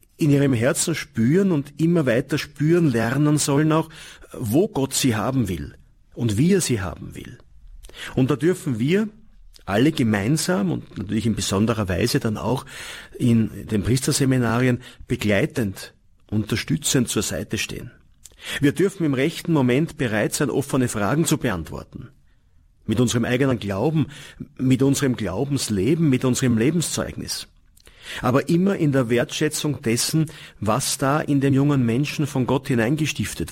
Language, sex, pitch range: German, male, 110-145 Hz